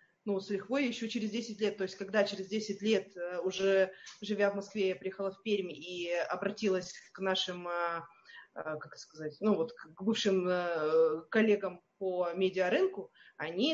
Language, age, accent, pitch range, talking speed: Russian, 20-39, native, 190-240 Hz, 155 wpm